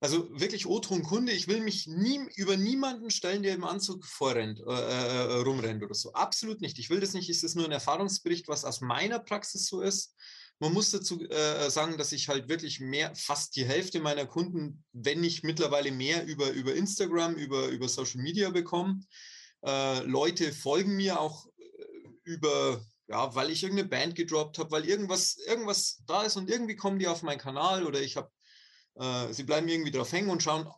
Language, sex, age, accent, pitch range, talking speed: German, male, 30-49, German, 145-195 Hz, 190 wpm